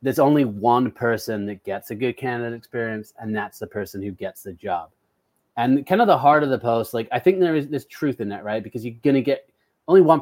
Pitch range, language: 115-140 Hz, English